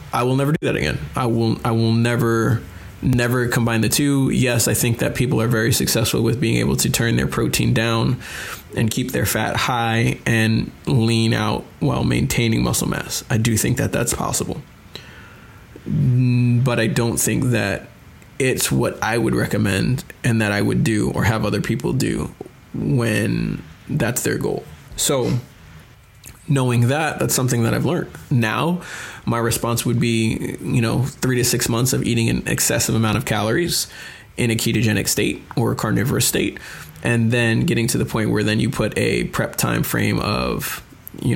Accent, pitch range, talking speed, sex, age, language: American, 110-125 Hz, 180 wpm, male, 20-39, English